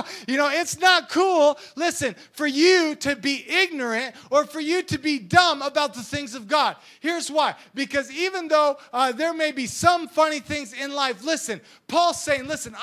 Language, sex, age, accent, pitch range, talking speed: English, male, 30-49, American, 215-290 Hz, 185 wpm